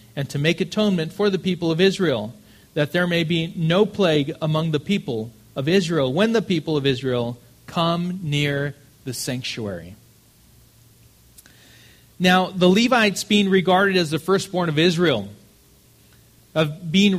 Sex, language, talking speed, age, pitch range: male, English, 145 wpm, 40-59, 140-185 Hz